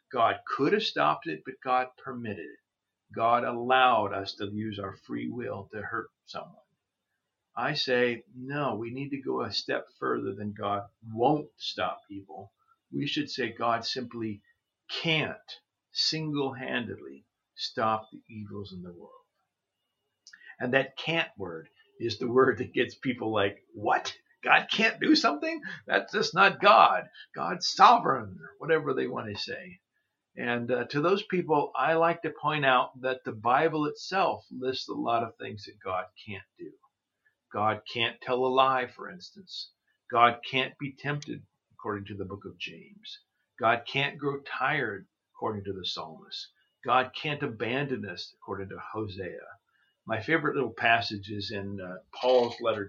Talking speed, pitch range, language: 160 wpm, 110-155 Hz, English